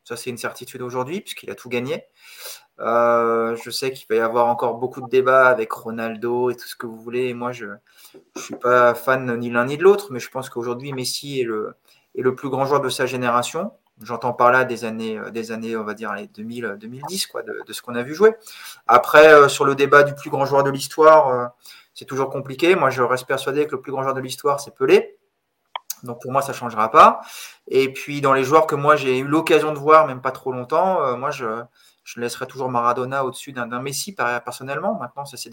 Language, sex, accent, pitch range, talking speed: French, male, French, 120-145 Hz, 235 wpm